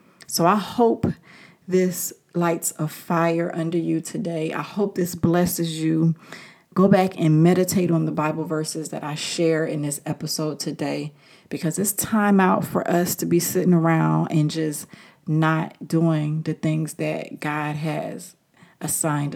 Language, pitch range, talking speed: English, 155-185 Hz, 155 wpm